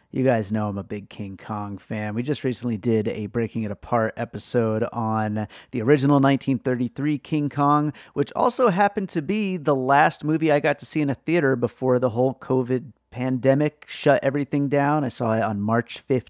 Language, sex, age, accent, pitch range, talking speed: English, male, 30-49, American, 110-140 Hz, 190 wpm